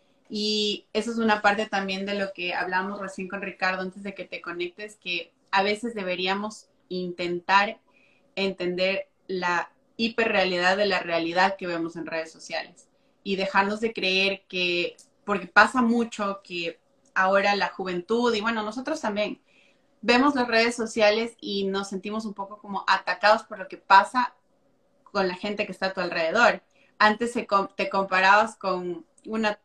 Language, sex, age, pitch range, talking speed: Spanish, female, 30-49, 195-235 Hz, 160 wpm